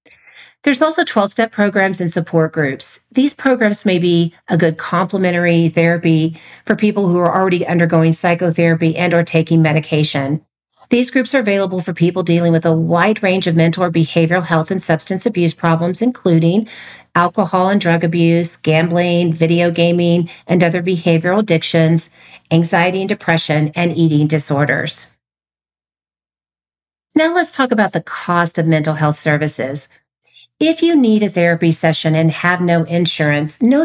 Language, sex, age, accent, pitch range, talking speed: English, female, 40-59, American, 160-190 Hz, 150 wpm